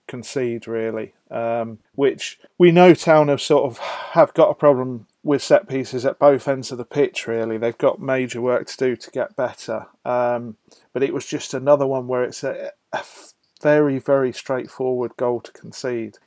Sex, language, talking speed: male, English, 185 wpm